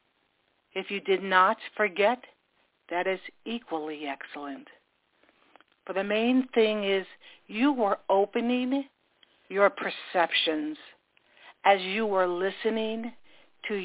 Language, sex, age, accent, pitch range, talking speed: English, female, 60-79, American, 185-230 Hz, 105 wpm